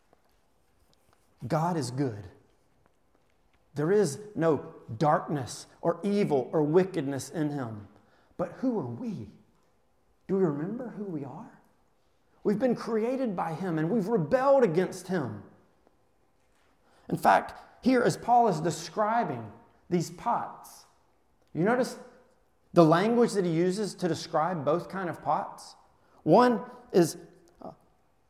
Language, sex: English, male